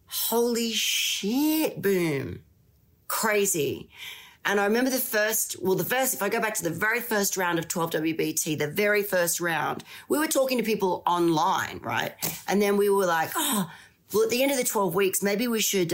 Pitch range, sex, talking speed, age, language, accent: 160-210 Hz, female, 195 wpm, 40-59, English, Australian